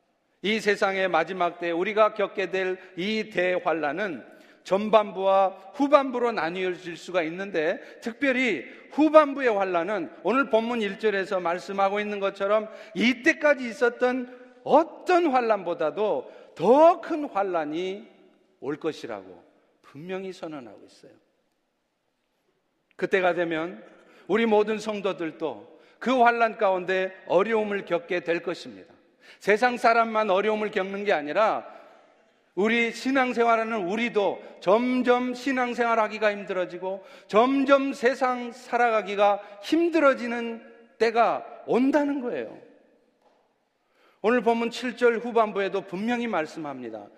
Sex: male